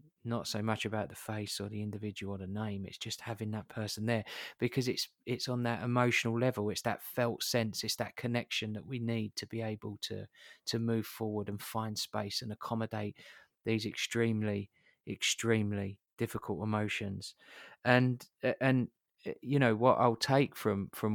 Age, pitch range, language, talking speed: 30-49, 105-120 Hz, English, 175 wpm